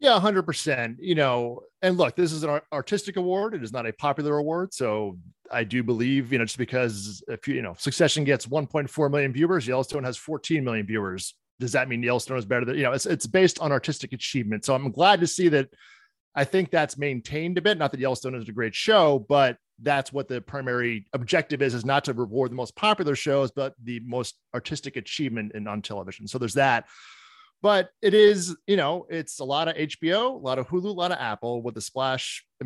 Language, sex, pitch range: English, male, 125-160 Hz